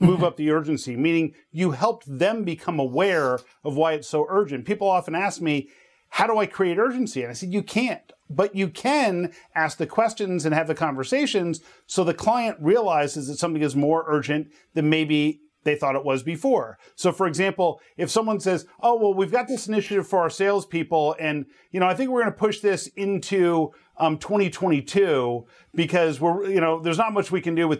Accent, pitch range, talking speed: American, 160-200 Hz, 205 wpm